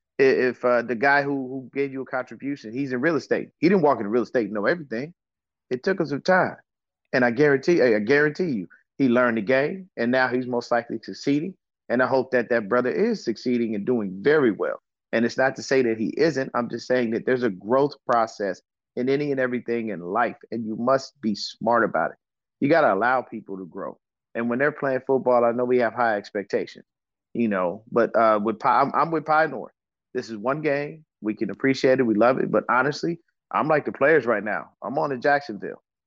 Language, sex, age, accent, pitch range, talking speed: English, male, 30-49, American, 115-135 Hz, 225 wpm